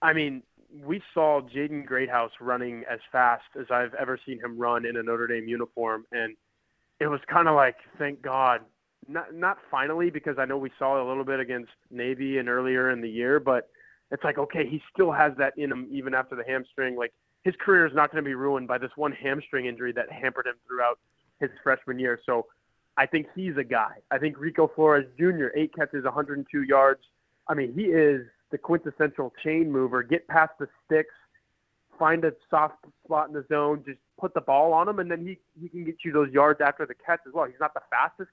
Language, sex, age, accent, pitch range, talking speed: English, male, 20-39, American, 130-160 Hz, 220 wpm